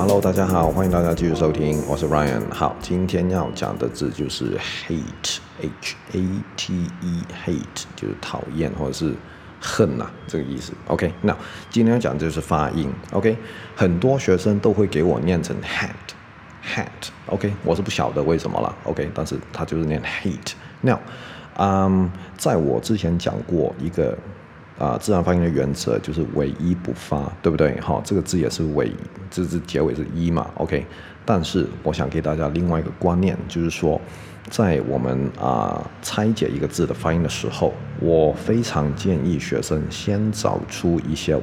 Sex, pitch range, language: male, 80-100 Hz, Chinese